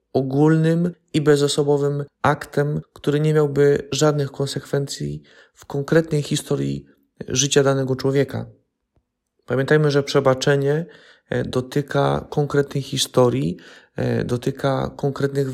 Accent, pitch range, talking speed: native, 130-150 Hz, 90 wpm